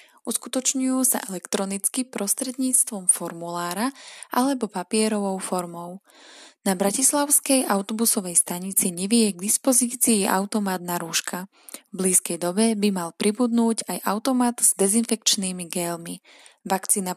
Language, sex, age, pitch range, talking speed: Slovak, female, 20-39, 180-230 Hz, 105 wpm